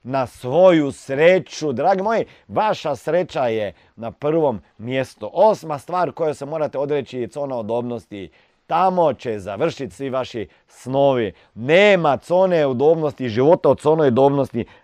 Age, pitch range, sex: 40-59, 100-140 Hz, male